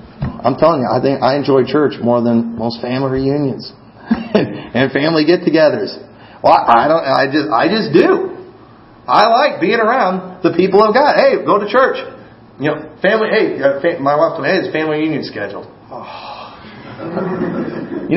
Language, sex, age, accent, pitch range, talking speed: English, male, 40-59, American, 120-175 Hz, 160 wpm